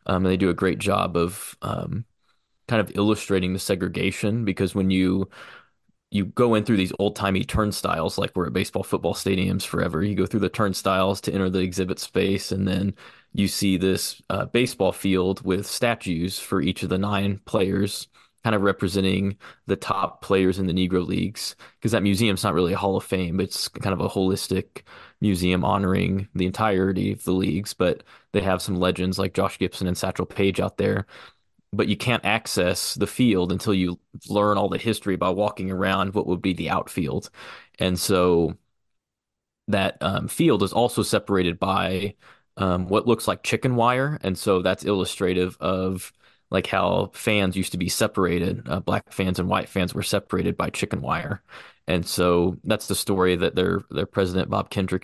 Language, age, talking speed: English, 20-39, 185 wpm